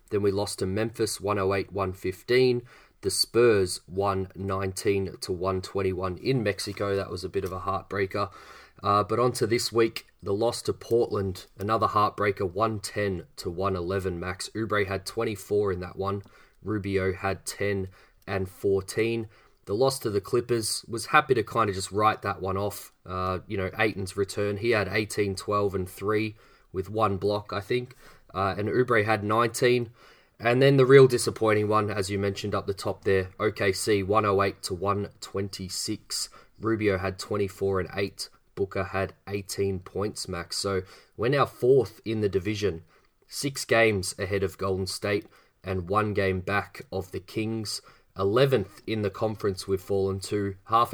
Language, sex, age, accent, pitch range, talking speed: English, male, 20-39, Australian, 95-110 Hz, 155 wpm